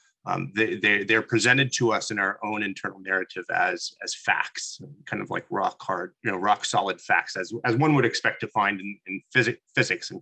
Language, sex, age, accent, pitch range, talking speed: English, male, 30-49, American, 95-115 Hz, 215 wpm